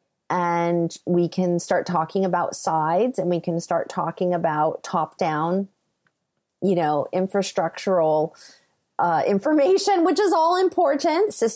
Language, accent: English, American